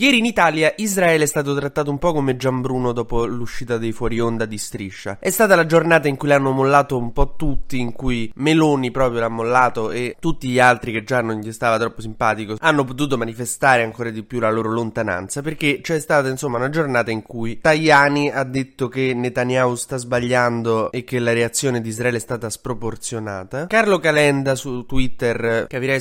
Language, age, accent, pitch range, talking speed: Italian, 20-39, native, 115-140 Hz, 195 wpm